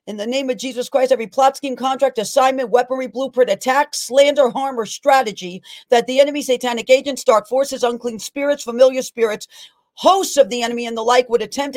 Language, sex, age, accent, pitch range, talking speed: English, female, 40-59, American, 225-280 Hz, 195 wpm